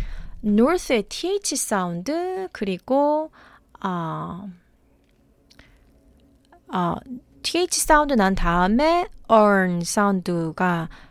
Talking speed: 65 wpm